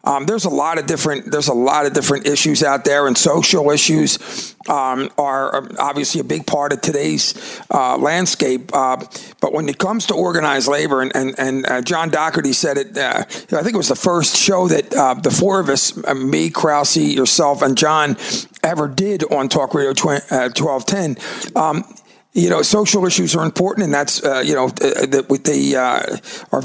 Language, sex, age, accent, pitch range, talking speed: English, male, 50-69, American, 145-200 Hz, 190 wpm